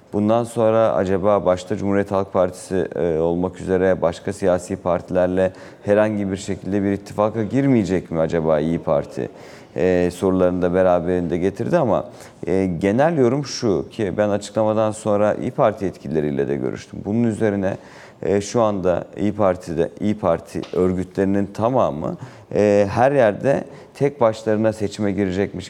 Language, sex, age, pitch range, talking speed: Turkish, male, 40-59, 85-110 Hz, 135 wpm